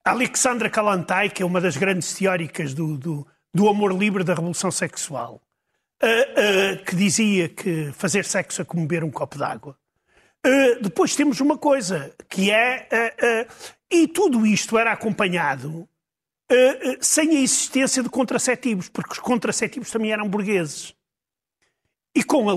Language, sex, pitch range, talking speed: Portuguese, male, 185-245 Hz, 140 wpm